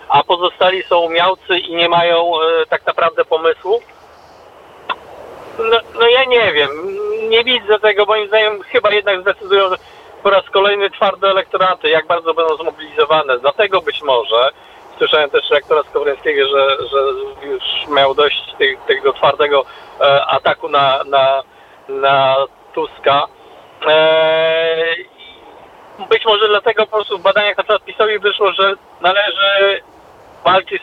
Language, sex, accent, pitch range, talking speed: Polish, male, native, 175-275 Hz, 135 wpm